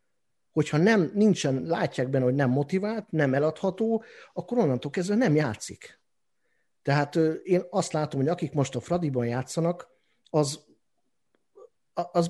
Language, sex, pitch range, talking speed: Hungarian, male, 130-180 Hz, 135 wpm